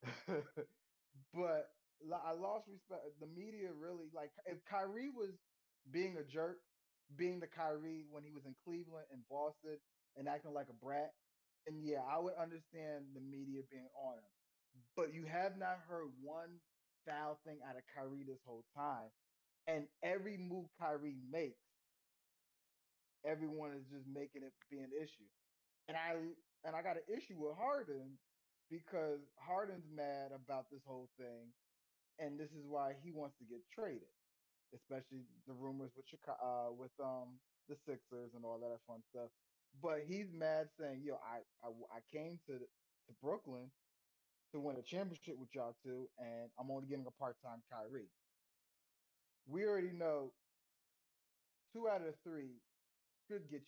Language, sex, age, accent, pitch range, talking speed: English, male, 20-39, American, 130-165 Hz, 160 wpm